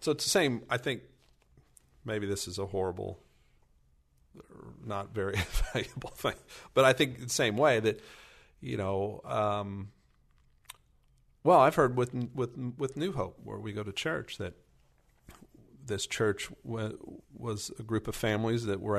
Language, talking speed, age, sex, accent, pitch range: English, 155 wpm, 40-59, male, American, 95-115 Hz